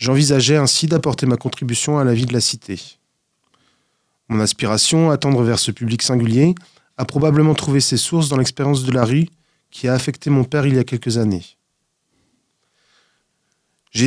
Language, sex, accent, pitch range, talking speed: French, male, French, 120-150 Hz, 170 wpm